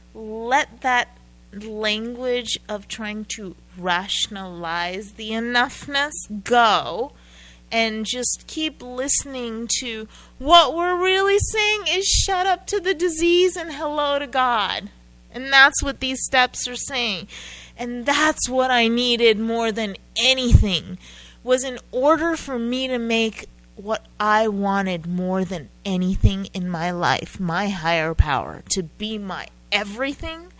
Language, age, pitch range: English, 30-49, 170-260 Hz